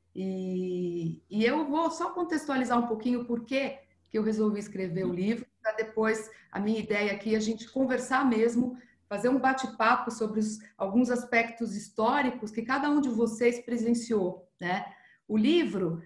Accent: Brazilian